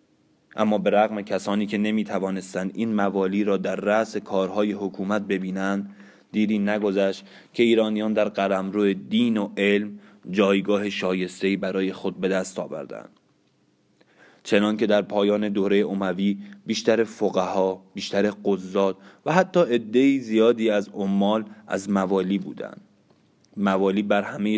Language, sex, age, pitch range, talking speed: Persian, male, 20-39, 95-105 Hz, 130 wpm